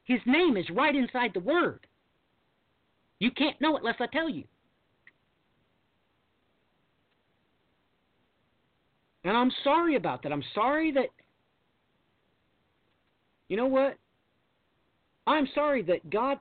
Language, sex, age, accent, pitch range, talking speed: English, male, 50-69, American, 185-275 Hz, 110 wpm